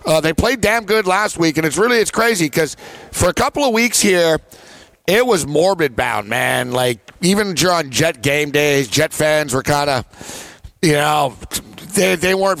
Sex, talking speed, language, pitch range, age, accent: male, 190 wpm, English, 150-190 Hz, 50-69, American